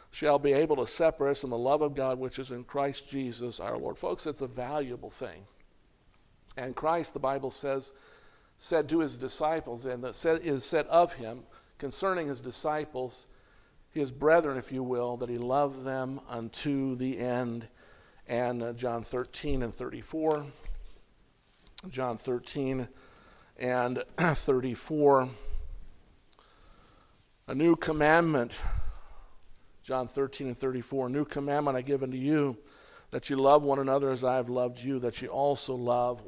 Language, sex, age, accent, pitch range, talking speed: English, male, 50-69, American, 125-150 Hz, 145 wpm